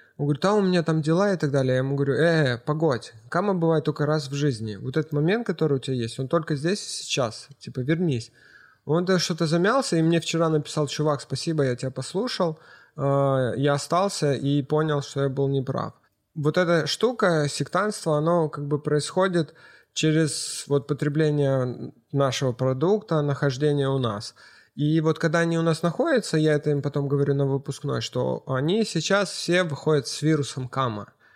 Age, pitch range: 20-39, 140-165 Hz